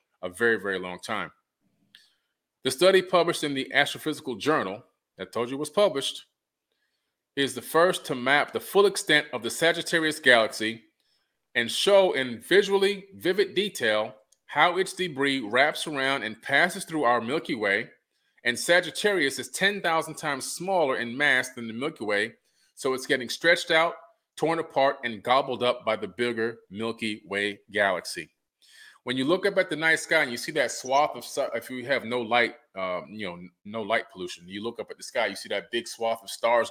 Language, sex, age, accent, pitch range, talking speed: English, male, 30-49, American, 115-160 Hz, 185 wpm